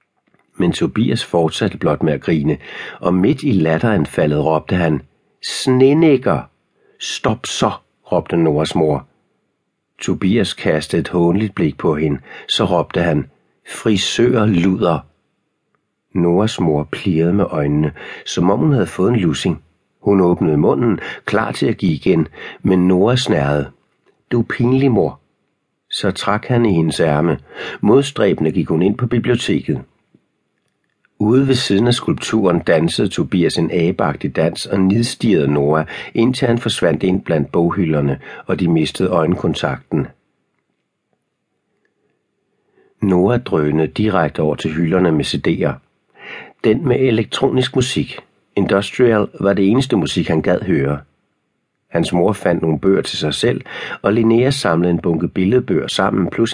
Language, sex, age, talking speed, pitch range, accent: Danish, male, 60-79, 135 wpm, 80-115 Hz, native